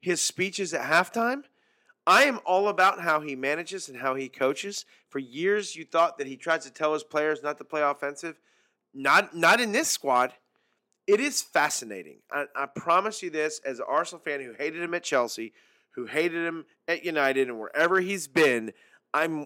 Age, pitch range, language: 30-49, 145-210 Hz, English